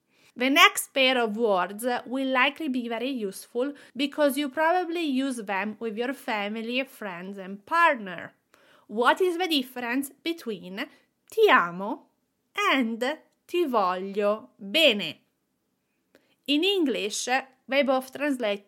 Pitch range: 215-285 Hz